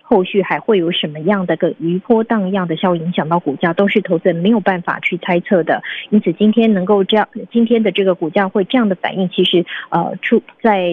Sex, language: female, Chinese